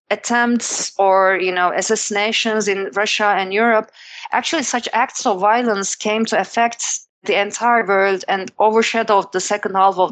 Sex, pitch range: female, 185-225 Hz